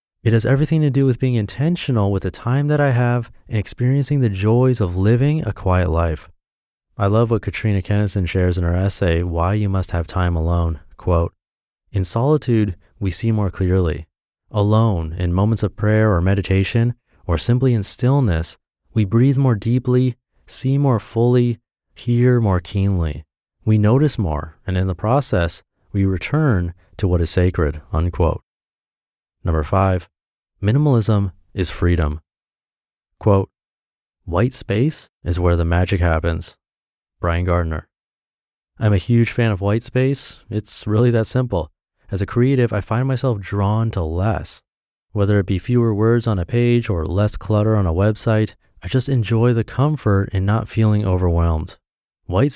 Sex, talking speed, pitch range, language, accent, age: male, 155 wpm, 90-120 Hz, English, American, 30-49